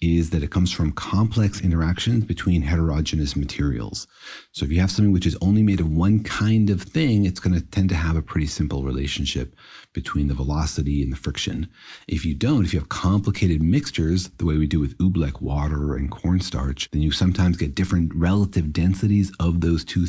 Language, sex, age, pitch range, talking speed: English, male, 40-59, 75-95 Hz, 200 wpm